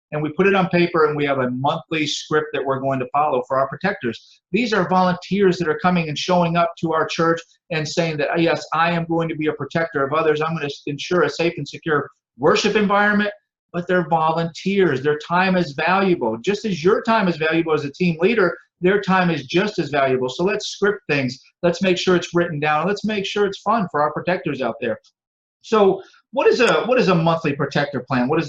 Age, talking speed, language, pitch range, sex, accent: 50-69, 230 wpm, English, 145-180 Hz, male, American